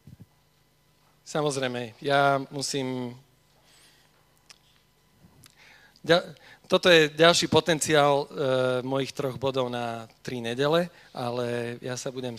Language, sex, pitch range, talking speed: Slovak, male, 125-160 Hz, 85 wpm